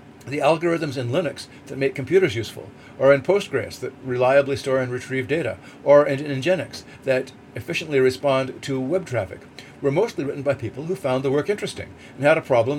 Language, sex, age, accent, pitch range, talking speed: English, male, 50-69, American, 125-155 Hz, 190 wpm